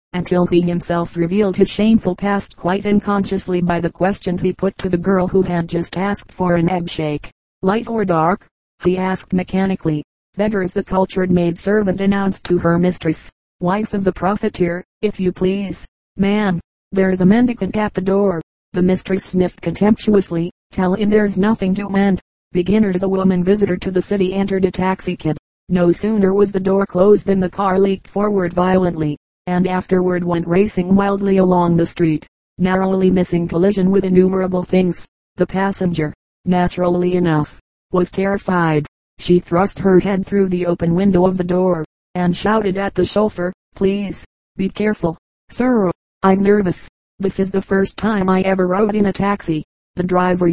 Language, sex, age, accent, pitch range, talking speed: English, female, 40-59, American, 180-195 Hz, 170 wpm